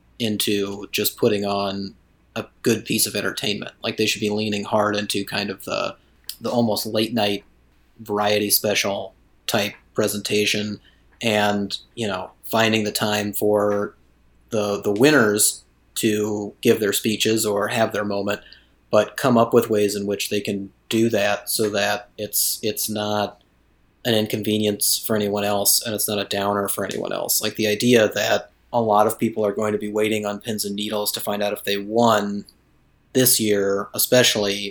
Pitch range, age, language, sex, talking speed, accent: 100-110 Hz, 30-49, English, male, 175 wpm, American